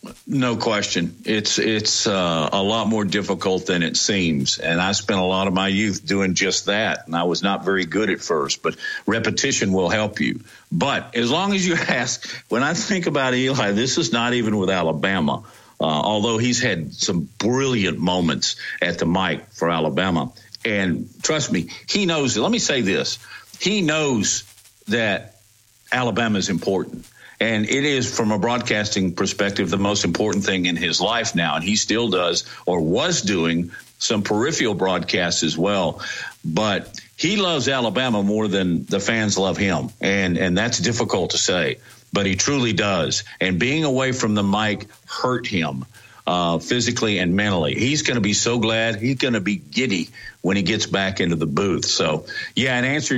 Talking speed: 180 wpm